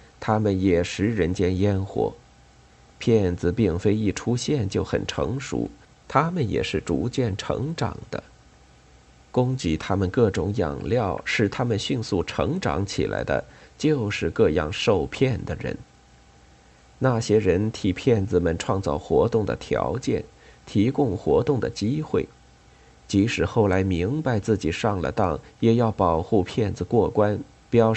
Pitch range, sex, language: 80-115 Hz, male, Chinese